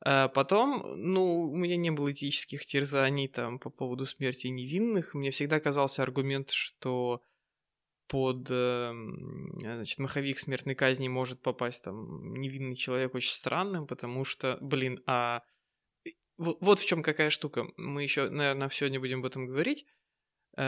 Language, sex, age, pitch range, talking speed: Russian, male, 20-39, 135-165 Hz, 135 wpm